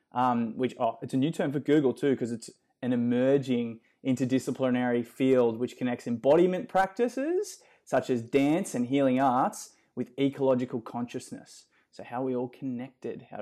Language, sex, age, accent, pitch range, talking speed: English, male, 20-39, Australian, 120-135 Hz, 160 wpm